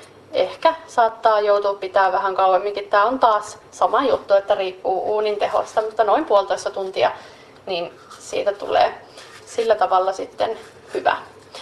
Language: Finnish